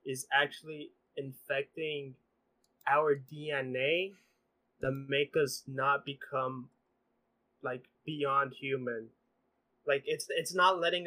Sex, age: male, 20-39